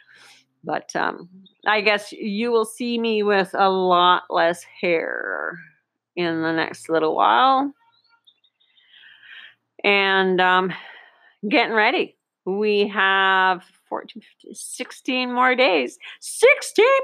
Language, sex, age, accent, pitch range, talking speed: English, female, 40-59, American, 180-245 Hz, 105 wpm